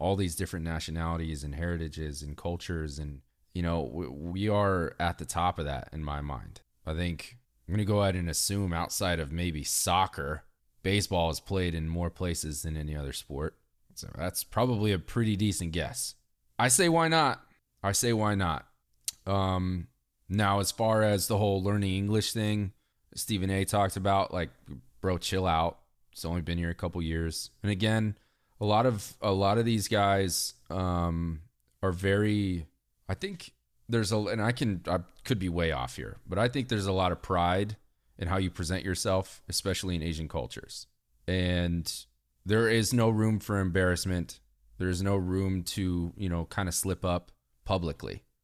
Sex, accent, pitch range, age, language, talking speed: male, American, 85-105 Hz, 20-39, English, 180 wpm